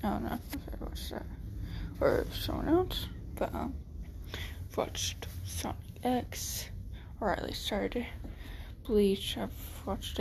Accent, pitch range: American, 85-100 Hz